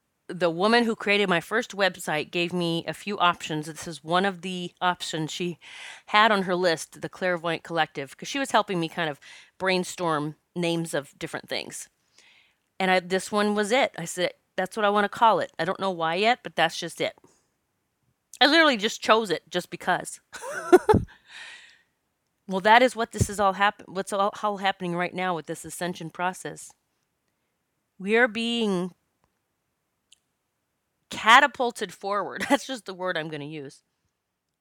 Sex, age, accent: female, 30-49, American